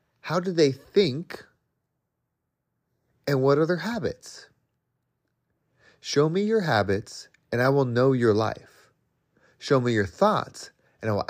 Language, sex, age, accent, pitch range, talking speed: English, male, 30-49, American, 115-165 Hz, 140 wpm